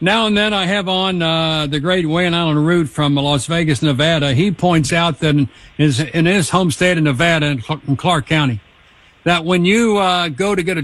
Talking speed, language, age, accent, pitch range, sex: 215 wpm, English, 60-79, American, 145-180 Hz, male